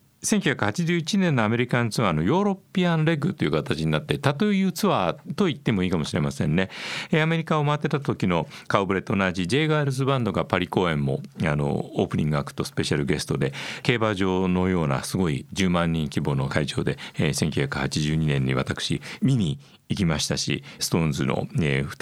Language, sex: Japanese, male